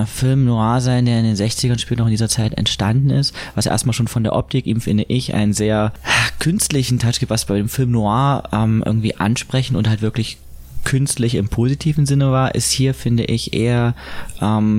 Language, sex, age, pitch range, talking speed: German, male, 20-39, 105-130 Hz, 205 wpm